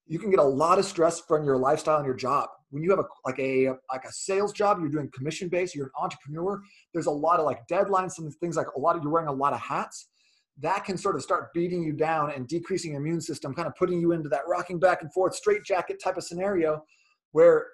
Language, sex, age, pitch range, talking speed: English, male, 30-49, 150-195 Hz, 260 wpm